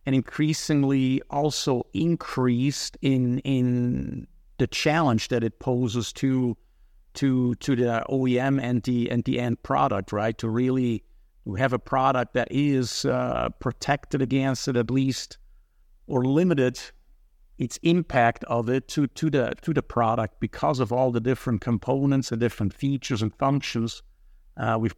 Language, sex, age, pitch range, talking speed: English, male, 50-69, 120-140 Hz, 145 wpm